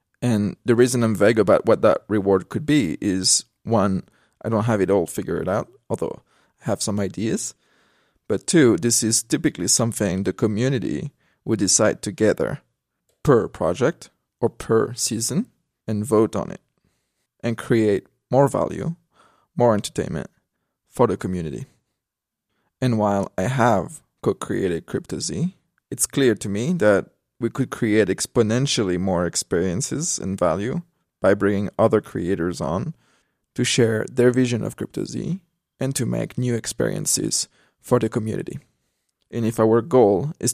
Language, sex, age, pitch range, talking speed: English, male, 20-39, 105-130 Hz, 145 wpm